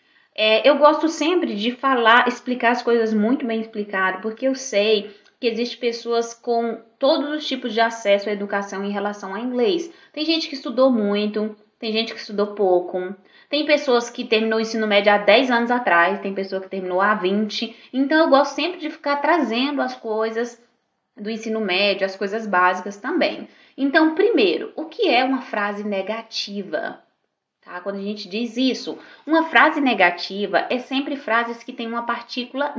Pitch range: 205-270 Hz